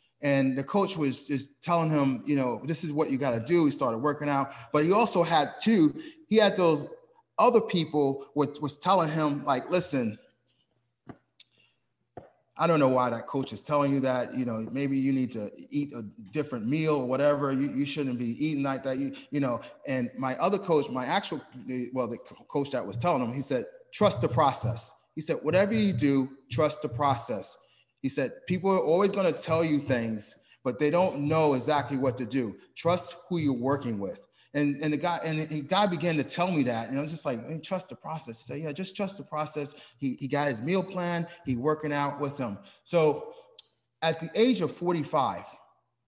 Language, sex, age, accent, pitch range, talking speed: English, male, 30-49, American, 125-165 Hz, 205 wpm